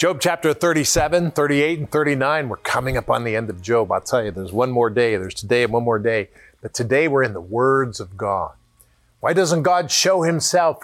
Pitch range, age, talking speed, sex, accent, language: 125-180 Hz, 50-69, 220 wpm, male, American, English